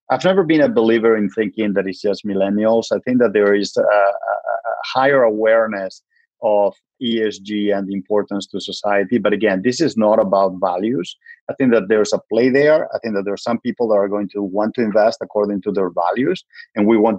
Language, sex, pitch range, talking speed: English, male, 100-120 Hz, 215 wpm